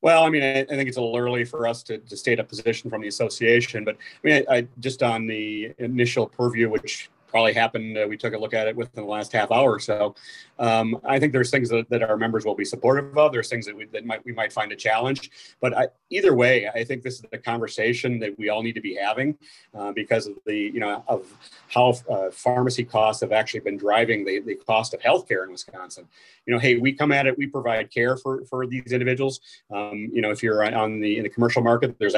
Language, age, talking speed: English, 40-59, 250 wpm